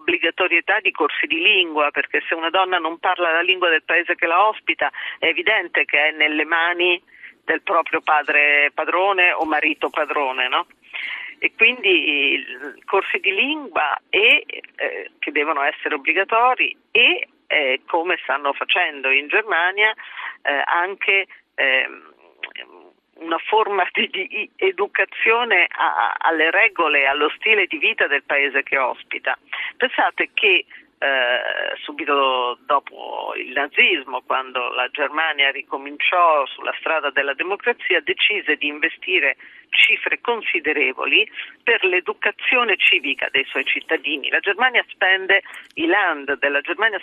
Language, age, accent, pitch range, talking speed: Italian, 40-59, native, 155-255 Hz, 130 wpm